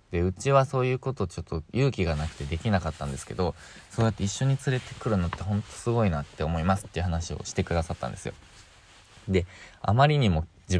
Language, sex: Japanese, male